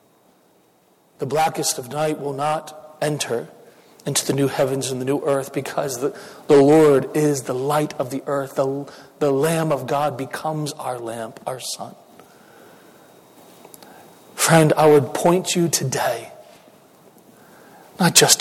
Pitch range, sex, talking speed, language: 140-160 Hz, male, 140 wpm, English